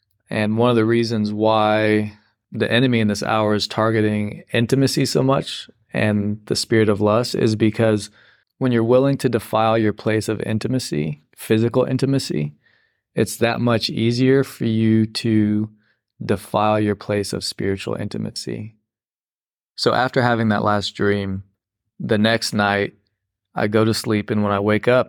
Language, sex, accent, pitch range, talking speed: English, male, American, 105-115 Hz, 155 wpm